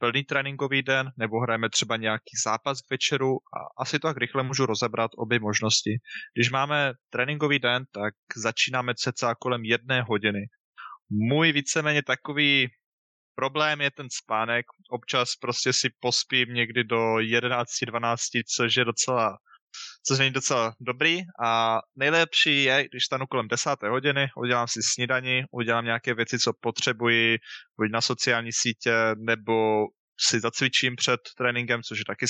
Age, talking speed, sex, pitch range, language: 20-39, 145 wpm, male, 115-130 Hz, Slovak